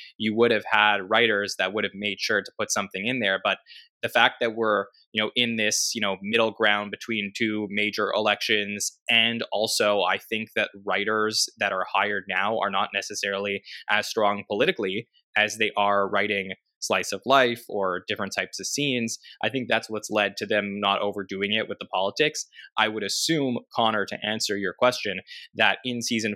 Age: 20-39